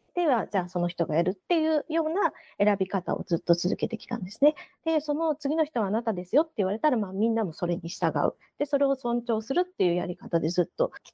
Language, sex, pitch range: Japanese, female, 190-280 Hz